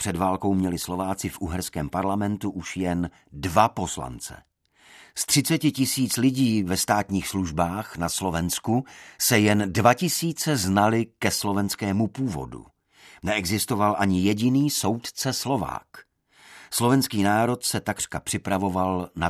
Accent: native